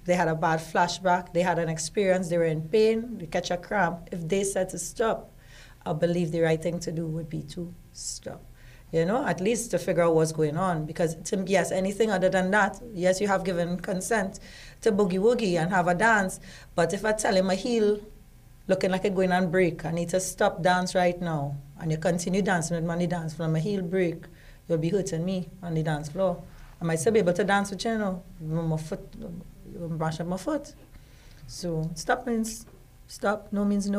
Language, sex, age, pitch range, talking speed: English, female, 30-49, 170-205 Hz, 215 wpm